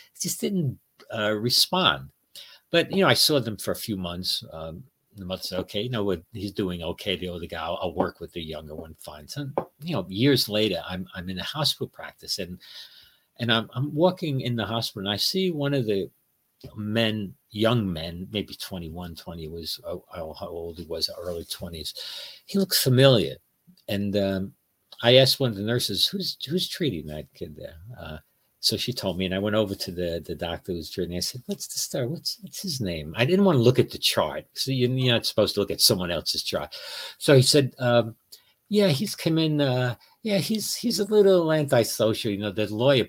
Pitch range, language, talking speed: 95-140 Hz, English, 215 wpm